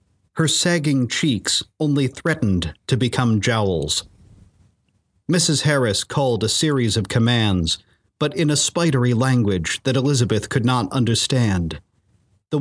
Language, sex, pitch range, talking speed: English, male, 100-135 Hz, 125 wpm